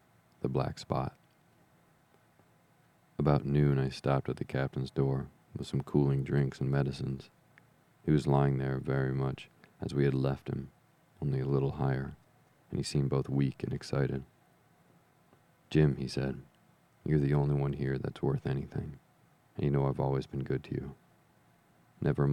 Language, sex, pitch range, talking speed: English, male, 65-70 Hz, 165 wpm